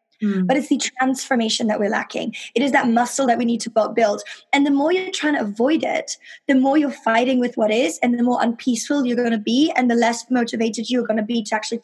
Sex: female